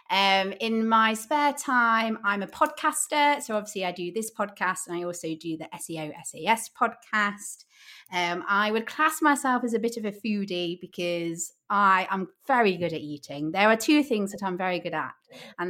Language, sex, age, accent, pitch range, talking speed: English, female, 30-49, British, 165-240 Hz, 190 wpm